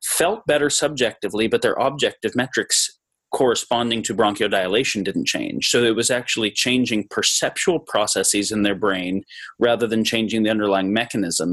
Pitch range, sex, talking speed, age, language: 100-125 Hz, male, 145 wpm, 30-49, English